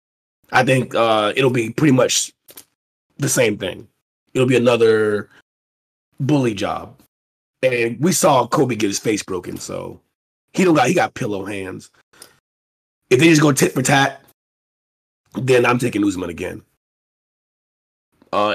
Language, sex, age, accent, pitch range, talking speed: English, male, 20-39, American, 110-150 Hz, 140 wpm